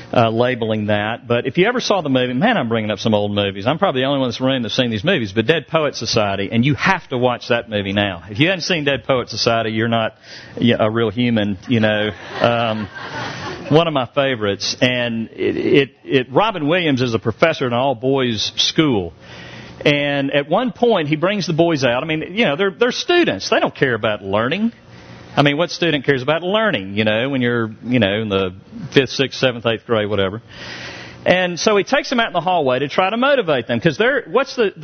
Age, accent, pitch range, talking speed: 50-69, American, 105-155 Hz, 230 wpm